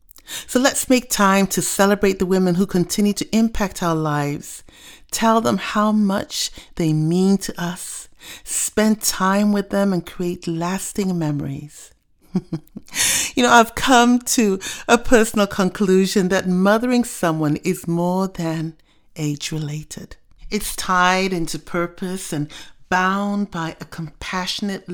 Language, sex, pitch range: English, female, 155-205 Hz